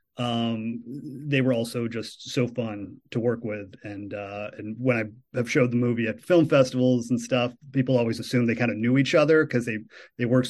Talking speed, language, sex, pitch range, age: 210 wpm, English, male, 115-130 Hz, 30-49